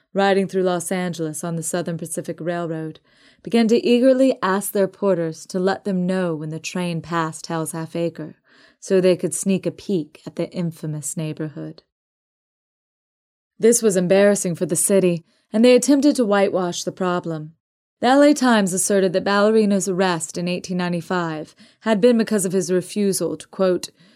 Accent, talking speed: American, 165 wpm